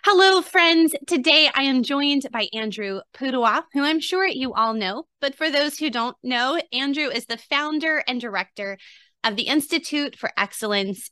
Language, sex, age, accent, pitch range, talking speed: English, female, 20-39, American, 205-290 Hz, 175 wpm